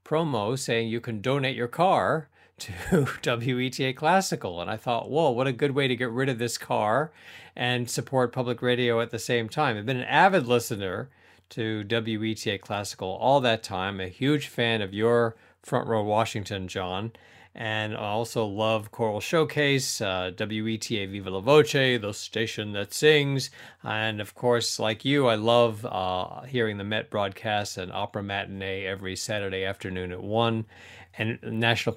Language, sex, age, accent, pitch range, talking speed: English, male, 40-59, American, 100-125 Hz, 165 wpm